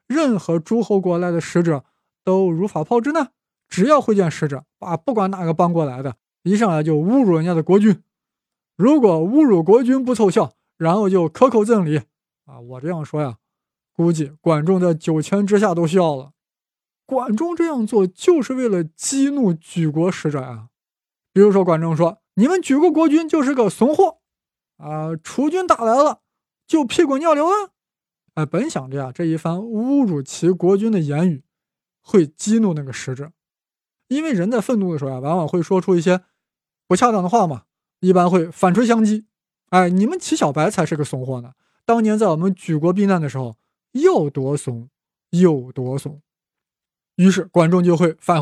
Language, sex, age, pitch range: Chinese, male, 20-39, 160-220 Hz